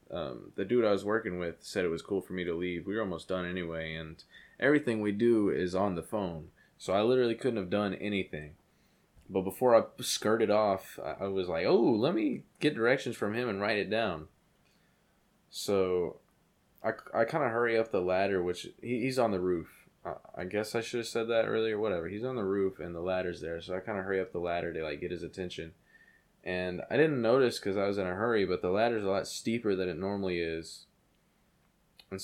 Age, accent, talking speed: 20-39, American, 220 wpm